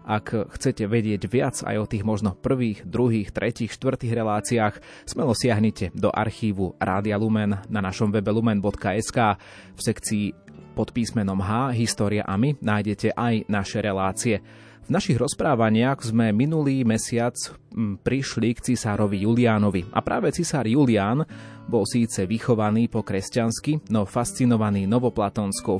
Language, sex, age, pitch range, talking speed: Slovak, male, 30-49, 105-120 Hz, 135 wpm